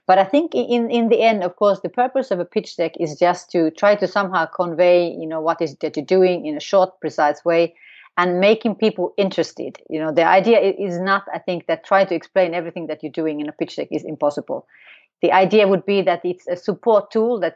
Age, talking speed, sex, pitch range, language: 30-49, 245 wpm, female, 170-210 Hz, English